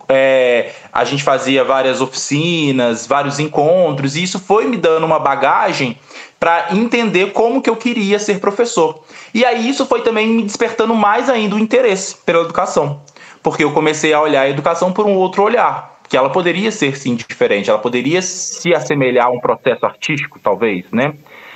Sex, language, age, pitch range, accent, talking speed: male, Portuguese, 20-39, 145-210 Hz, Brazilian, 175 wpm